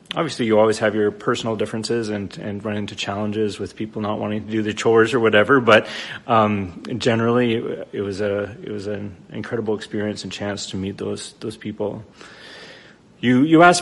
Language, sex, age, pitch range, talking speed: English, male, 30-49, 105-115 Hz, 185 wpm